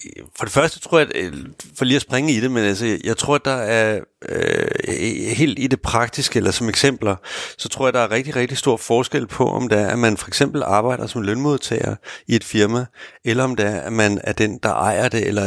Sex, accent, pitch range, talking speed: male, native, 105-130 Hz, 240 wpm